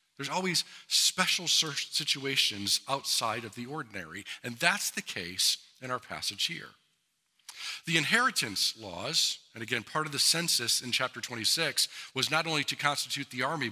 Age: 50-69